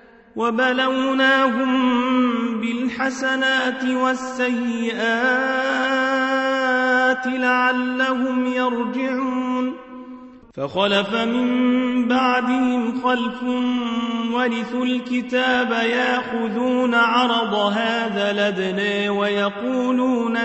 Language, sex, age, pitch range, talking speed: Arabic, male, 30-49, 235-260 Hz, 45 wpm